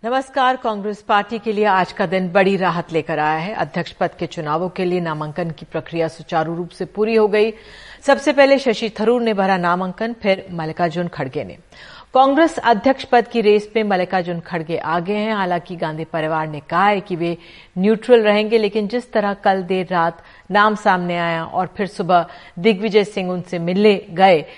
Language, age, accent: Hindi, 50-69, native